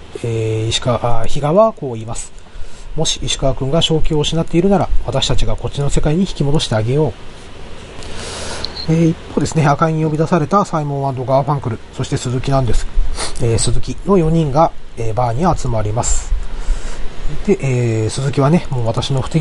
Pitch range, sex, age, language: 110-150 Hz, male, 30-49, Japanese